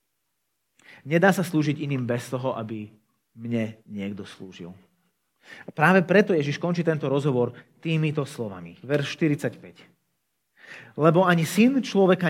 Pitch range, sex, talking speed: 115-170 Hz, male, 120 wpm